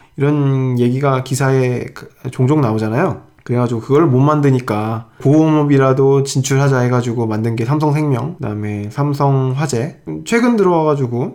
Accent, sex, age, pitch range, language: native, male, 20-39, 120-145 Hz, Korean